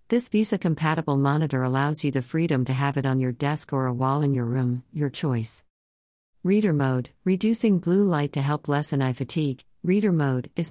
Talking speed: 190 wpm